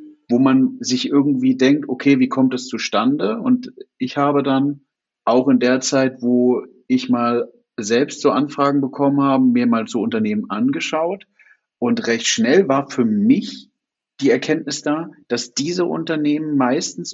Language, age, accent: German, 50-69, German